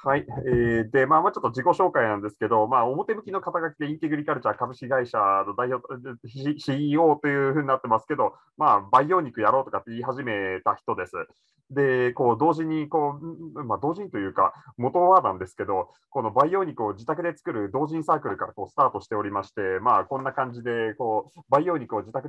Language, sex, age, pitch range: Japanese, male, 30-49, 120-165 Hz